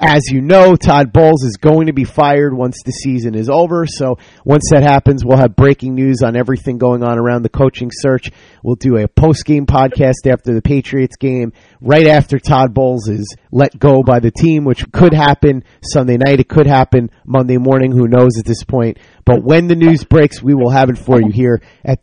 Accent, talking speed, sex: American, 210 wpm, male